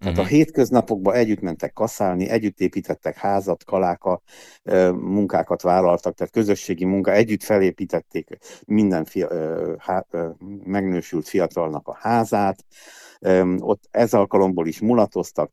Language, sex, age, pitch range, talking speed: Hungarian, male, 60-79, 90-100 Hz, 110 wpm